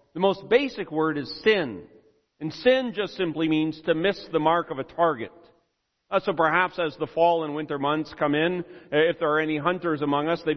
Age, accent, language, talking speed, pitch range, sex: 40-59, American, English, 210 wpm, 160-210 Hz, male